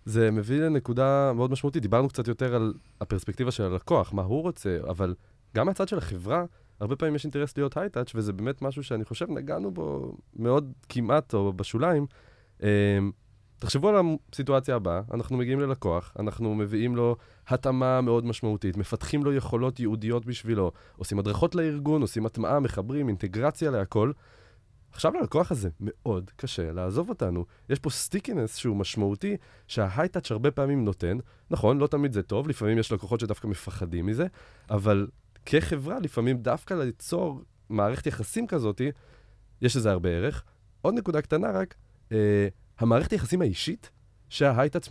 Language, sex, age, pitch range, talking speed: Hebrew, male, 20-39, 105-140 Hz, 150 wpm